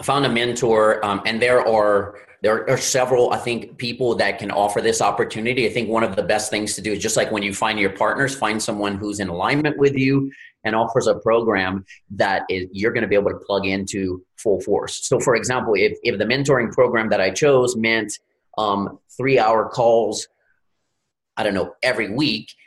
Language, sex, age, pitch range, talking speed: English, male, 30-49, 105-135 Hz, 210 wpm